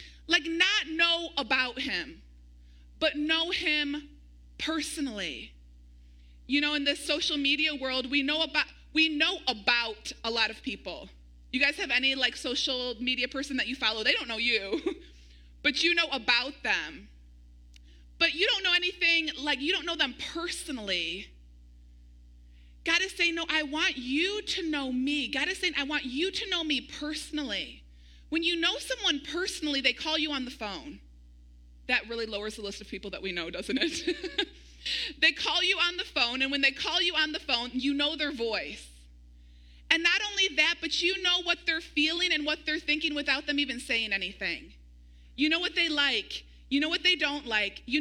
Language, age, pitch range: English, 30-49, 215-330 Hz